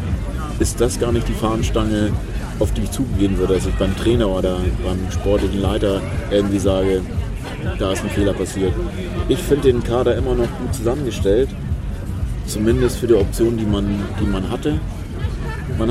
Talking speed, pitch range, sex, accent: 160 wpm, 100-120 Hz, male, German